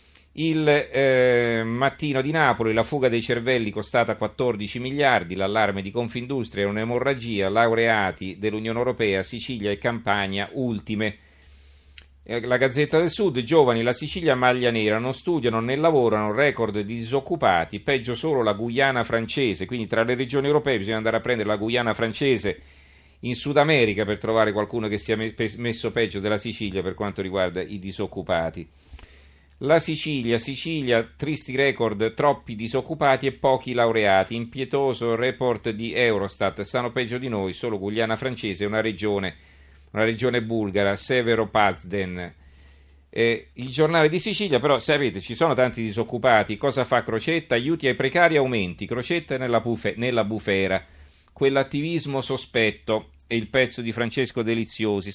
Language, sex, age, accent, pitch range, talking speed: Italian, male, 40-59, native, 105-130 Hz, 145 wpm